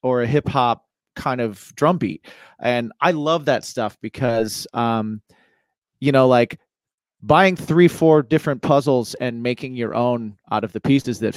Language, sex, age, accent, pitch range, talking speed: English, male, 30-49, American, 110-135 Hz, 170 wpm